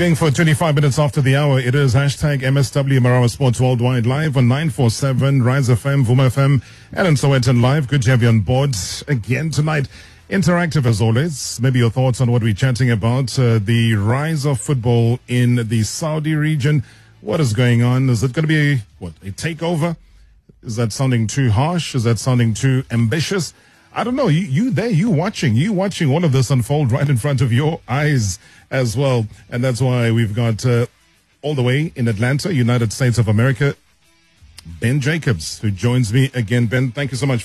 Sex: male